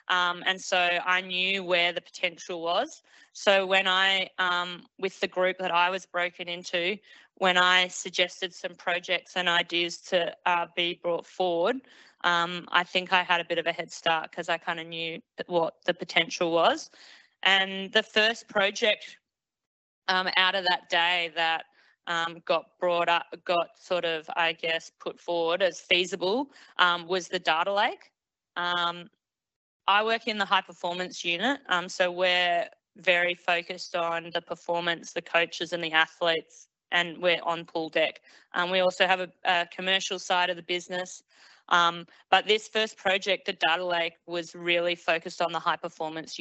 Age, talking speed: 20-39, 170 wpm